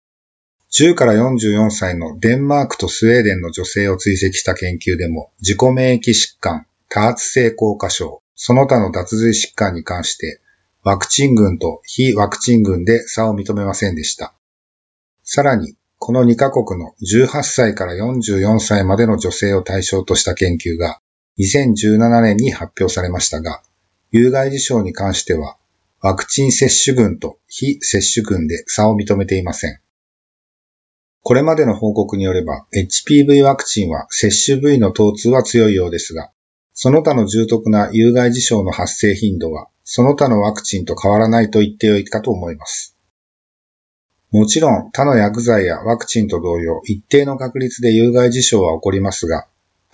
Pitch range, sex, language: 95-120 Hz, male, Japanese